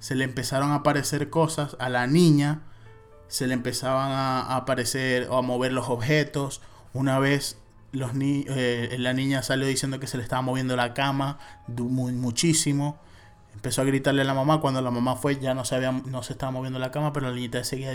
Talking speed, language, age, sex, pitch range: 190 wpm, Spanish, 20-39, male, 125-140 Hz